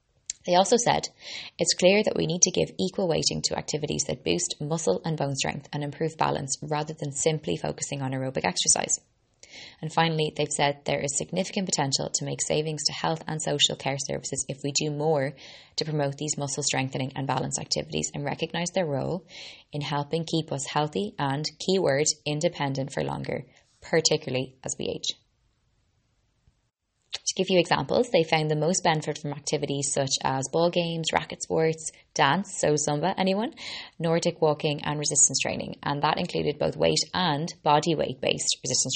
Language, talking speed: English, 175 wpm